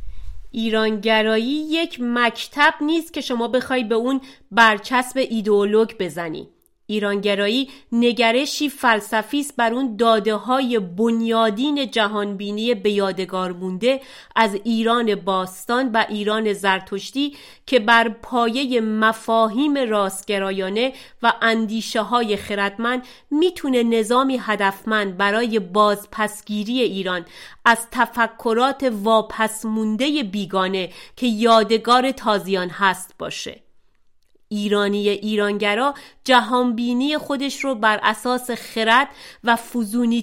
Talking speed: 95 wpm